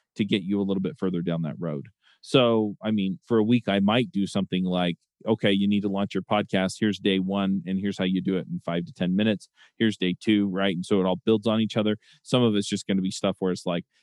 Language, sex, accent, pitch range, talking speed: English, male, American, 90-110 Hz, 275 wpm